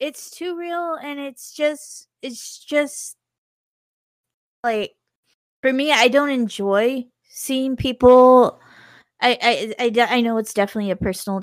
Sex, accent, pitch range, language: female, American, 195-245 Hz, English